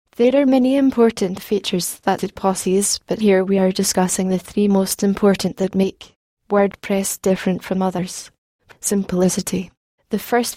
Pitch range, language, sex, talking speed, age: 190-215 Hz, English, female, 150 wpm, 20-39